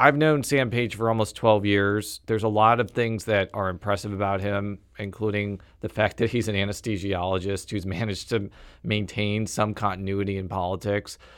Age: 40-59